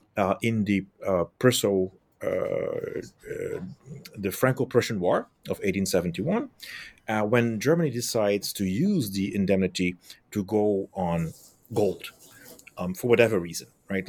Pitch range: 95-125 Hz